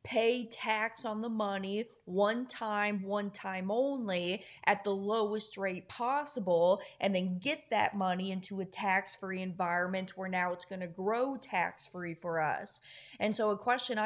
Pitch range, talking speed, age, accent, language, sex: 190-235 Hz, 155 wpm, 30-49, American, English, female